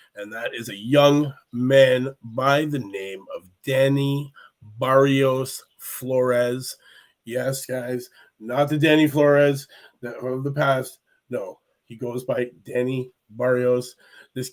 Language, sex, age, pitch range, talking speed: English, male, 30-49, 125-150 Hz, 120 wpm